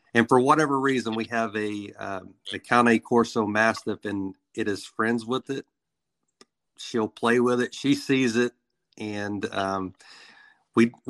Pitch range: 105-120 Hz